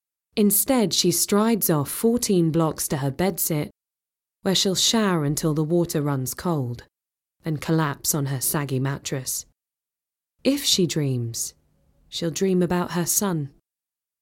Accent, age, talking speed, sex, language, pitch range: British, 20-39, 130 wpm, female, English, 140-185 Hz